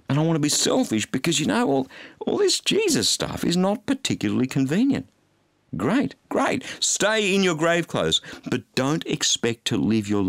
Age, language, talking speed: 50-69, English, 180 wpm